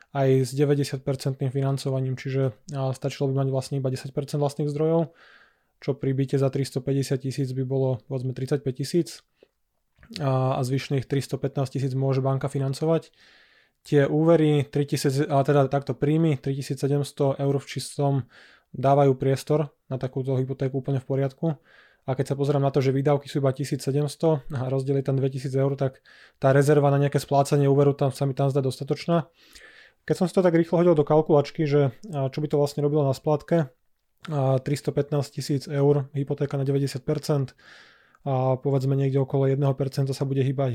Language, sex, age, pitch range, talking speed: Slovak, male, 20-39, 135-145 Hz, 165 wpm